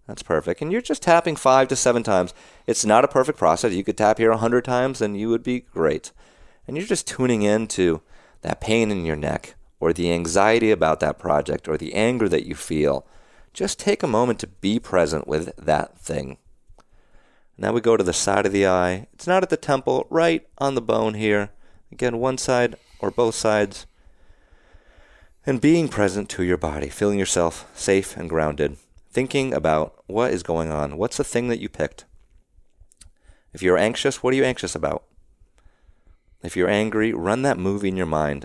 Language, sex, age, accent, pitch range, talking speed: English, male, 30-49, American, 80-115 Hz, 195 wpm